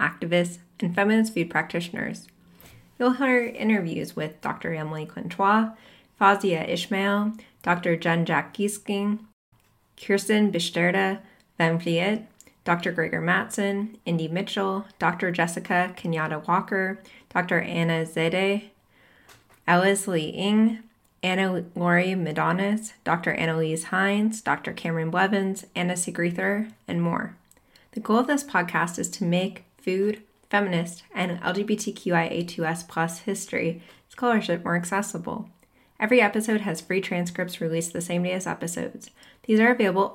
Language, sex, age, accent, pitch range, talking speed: English, female, 20-39, American, 170-200 Hz, 115 wpm